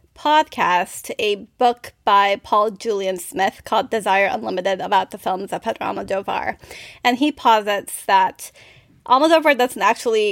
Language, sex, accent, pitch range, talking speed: English, female, American, 205-260 Hz, 135 wpm